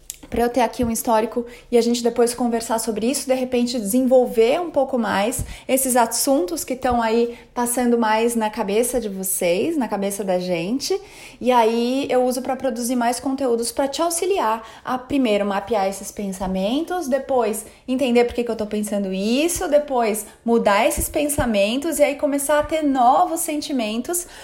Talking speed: 170 wpm